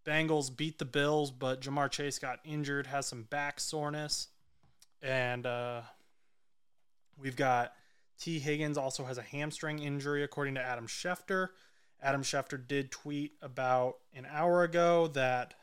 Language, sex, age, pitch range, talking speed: English, male, 20-39, 125-155 Hz, 140 wpm